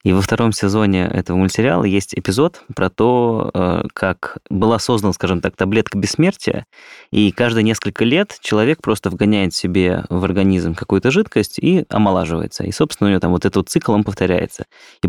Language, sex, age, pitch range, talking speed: Russian, male, 20-39, 95-110 Hz, 165 wpm